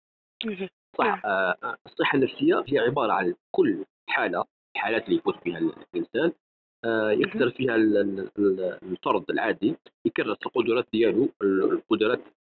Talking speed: 100 wpm